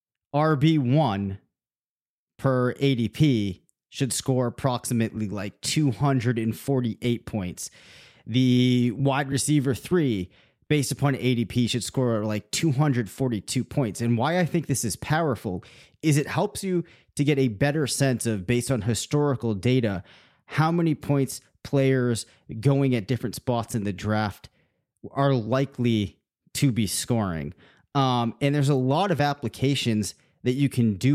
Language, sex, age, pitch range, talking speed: English, male, 30-49, 115-140 Hz, 135 wpm